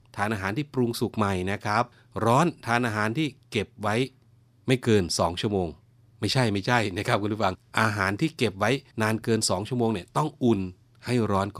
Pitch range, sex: 90-115 Hz, male